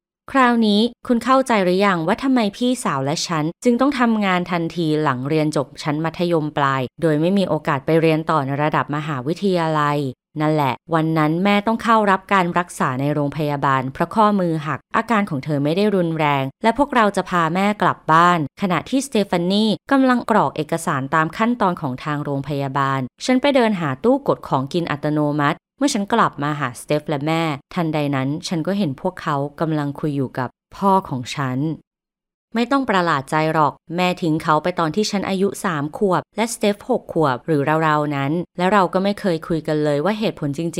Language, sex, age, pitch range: Thai, female, 20-39, 150-200 Hz